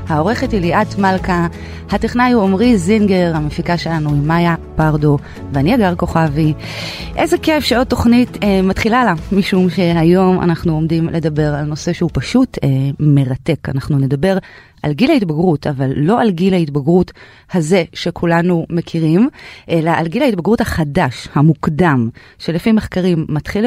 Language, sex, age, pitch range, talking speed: Hebrew, female, 30-49, 150-195 Hz, 140 wpm